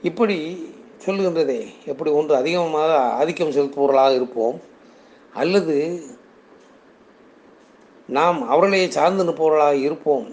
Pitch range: 150-180 Hz